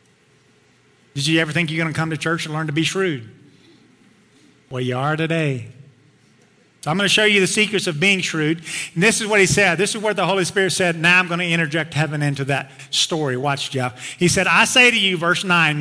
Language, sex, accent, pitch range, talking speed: English, male, American, 160-195 Hz, 240 wpm